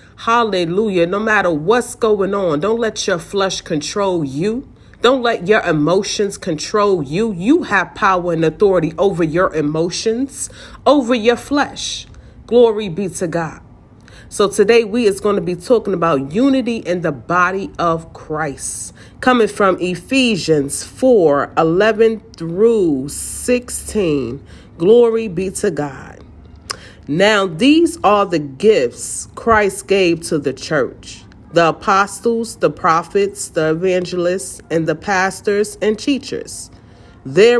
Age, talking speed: 40-59, 130 wpm